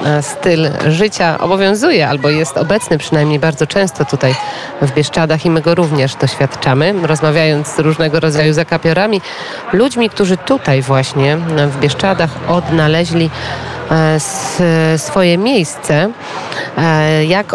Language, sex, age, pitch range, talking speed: Polish, female, 40-59, 145-170 Hz, 110 wpm